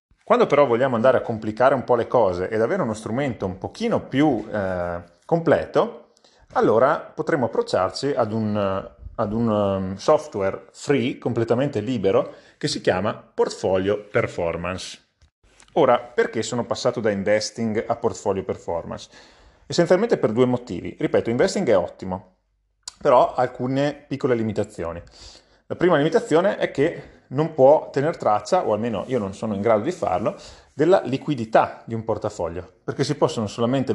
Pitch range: 100-135 Hz